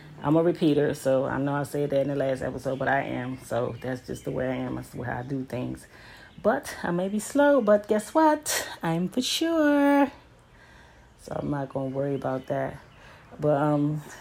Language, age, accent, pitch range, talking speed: English, 30-49, American, 130-160 Hz, 210 wpm